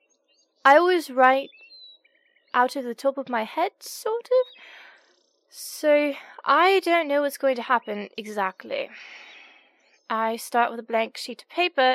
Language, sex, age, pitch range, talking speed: English, female, 20-39, 230-310 Hz, 145 wpm